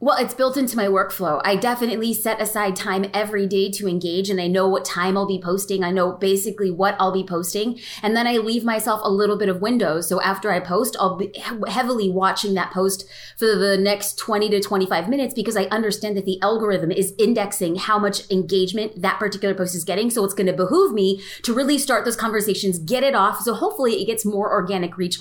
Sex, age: female, 20-39